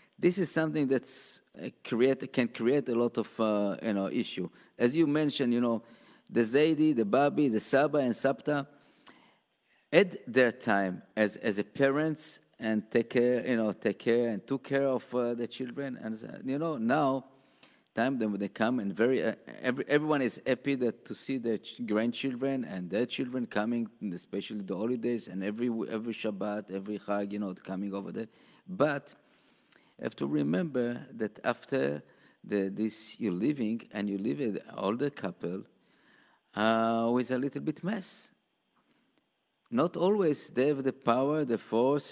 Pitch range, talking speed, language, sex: 110-135 Hz, 170 wpm, English, male